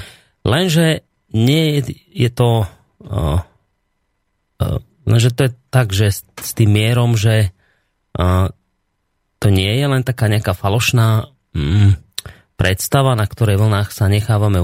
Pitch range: 95-115 Hz